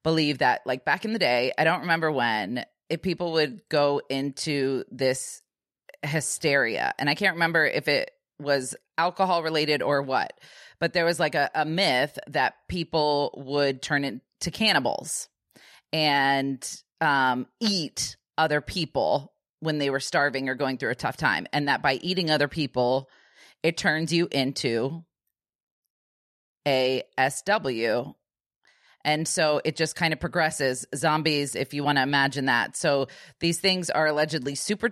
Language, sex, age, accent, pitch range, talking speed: English, female, 20-39, American, 140-180 Hz, 155 wpm